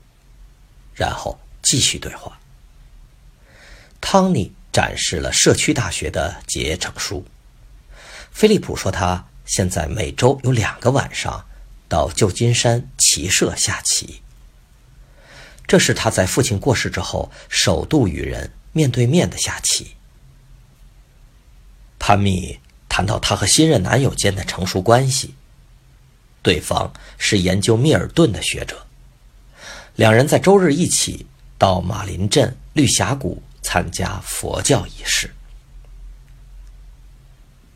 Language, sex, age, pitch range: Chinese, male, 50-69, 100-135 Hz